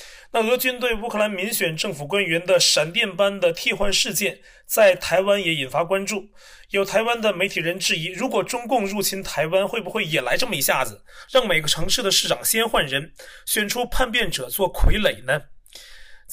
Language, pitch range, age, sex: Chinese, 175-215 Hz, 30-49, male